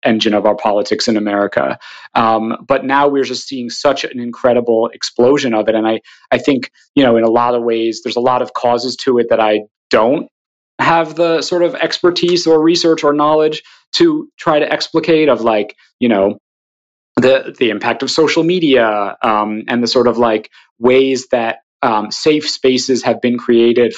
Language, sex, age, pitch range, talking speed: English, male, 30-49, 110-135 Hz, 190 wpm